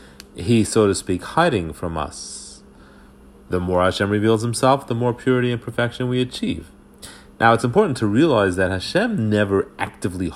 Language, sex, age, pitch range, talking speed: English, male, 30-49, 85-115 Hz, 160 wpm